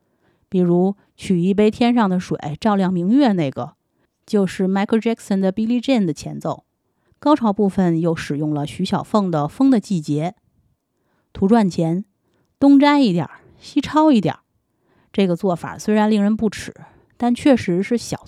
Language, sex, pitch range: Chinese, female, 175-225 Hz